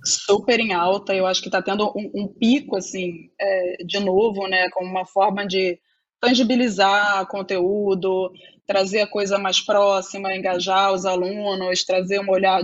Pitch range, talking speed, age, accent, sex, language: 185-215 Hz, 155 wpm, 20-39, Brazilian, female, Portuguese